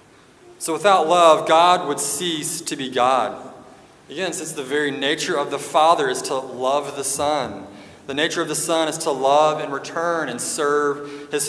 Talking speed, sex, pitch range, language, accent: 185 wpm, male, 130-160 Hz, English, American